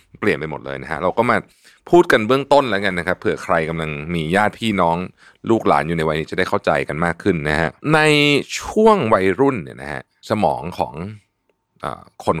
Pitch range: 85-110 Hz